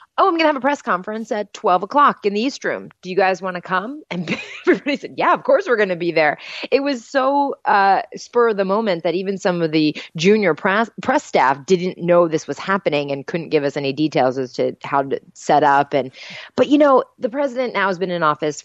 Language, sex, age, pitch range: English, female, 30-49, 155-220 Hz